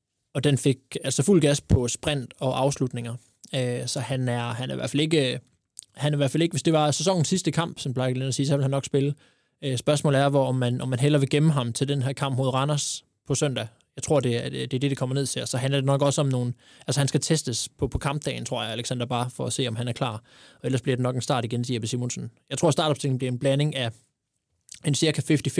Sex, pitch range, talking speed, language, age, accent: male, 125-140 Hz, 270 wpm, Danish, 20-39, native